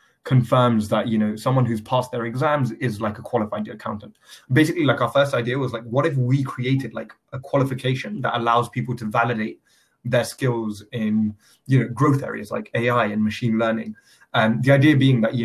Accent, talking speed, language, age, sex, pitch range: British, 200 wpm, English, 20-39, male, 110-130 Hz